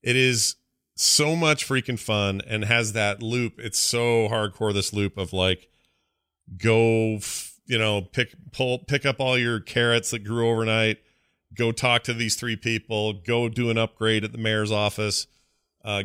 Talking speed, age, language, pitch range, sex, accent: 170 wpm, 40-59, English, 110-125 Hz, male, American